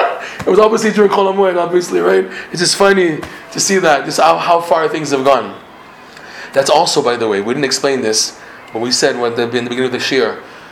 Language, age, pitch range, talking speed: English, 30-49, 125-175 Hz, 230 wpm